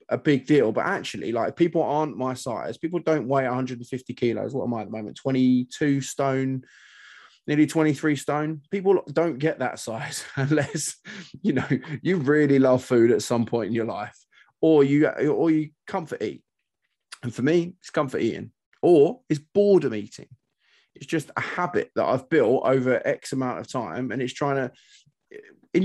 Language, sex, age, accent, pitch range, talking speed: English, male, 20-39, British, 125-150 Hz, 175 wpm